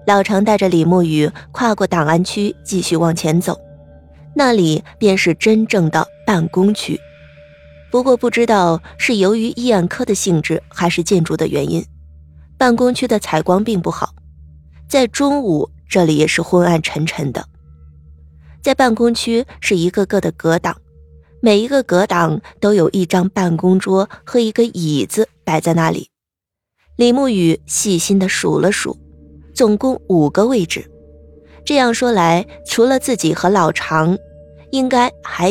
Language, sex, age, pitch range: Chinese, female, 20-39, 150-215 Hz